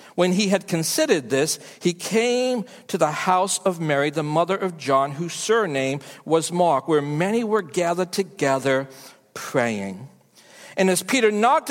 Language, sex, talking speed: English, male, 155 wpm